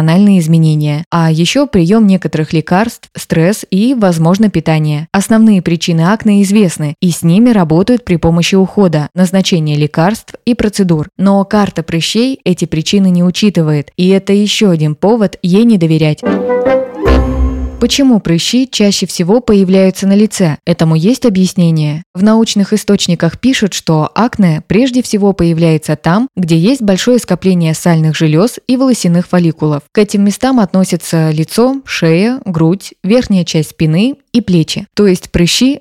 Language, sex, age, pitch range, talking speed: Russian, female, 20-39, 165-210 Hz, 140 wpm